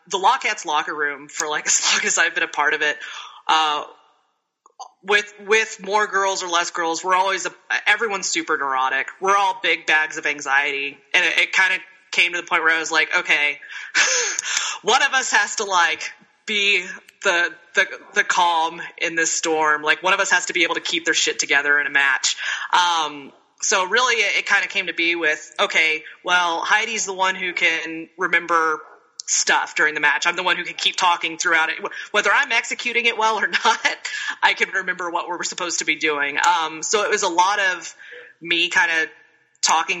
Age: 20-39